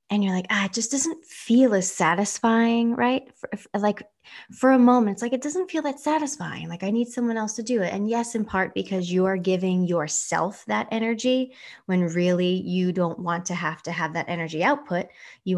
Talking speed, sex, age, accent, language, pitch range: 215 wpm, female, 20-39, American, English, 185-245 Hz